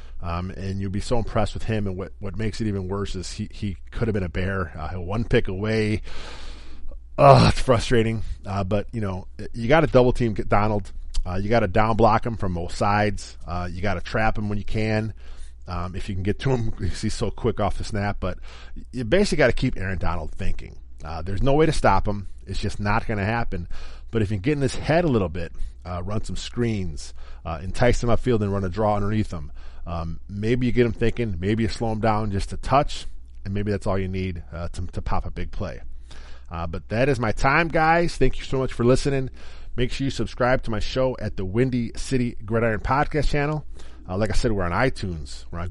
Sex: male